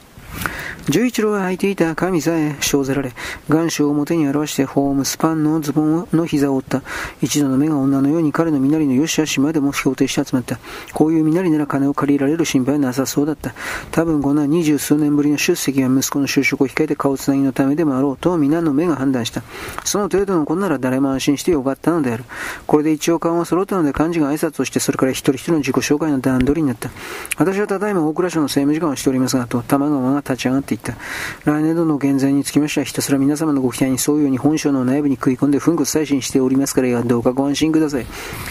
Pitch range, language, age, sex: 135-160 Hz, Japanese, 40-59, male